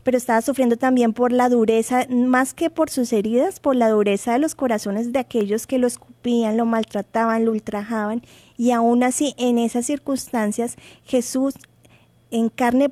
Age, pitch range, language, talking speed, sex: 20-39, 220-260 Hz, Spanish, 165 wpm, female